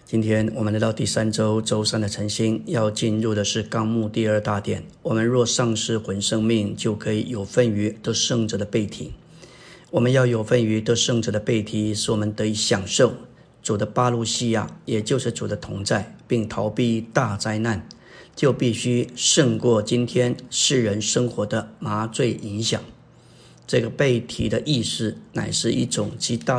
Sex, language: male, Chinese